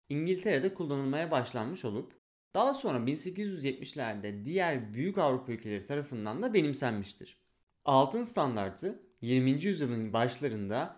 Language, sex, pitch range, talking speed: Turkish, male, 110-165 Hz, 105 wpm